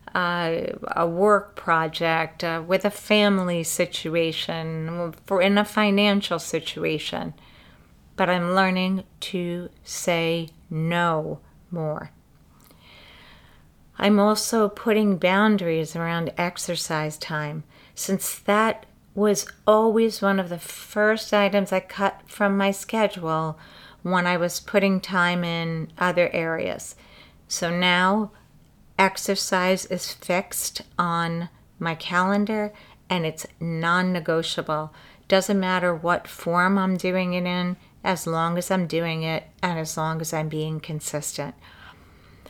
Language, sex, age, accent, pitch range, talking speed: English, female, 40-59, American, 165-195 Hz, 115 wpm